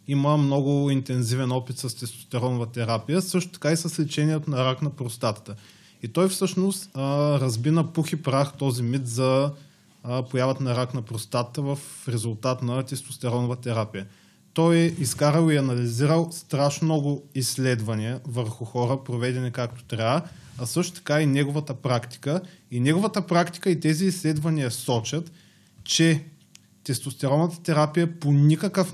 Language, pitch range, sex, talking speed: Bulgarian, 125-155 Hz, male, 140 wpm